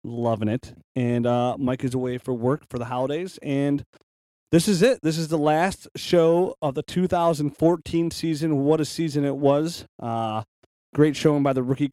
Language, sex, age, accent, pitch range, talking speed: English, male, 30-49, American, 120-145 Hz, 180 wpm